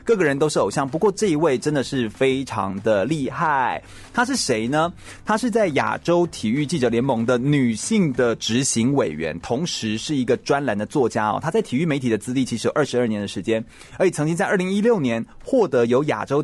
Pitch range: 120-175 Hz